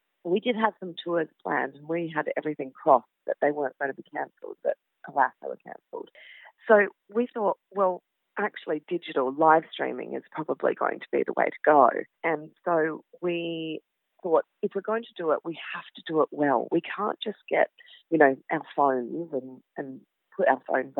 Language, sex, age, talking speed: English, female, 40-59, 195 wpm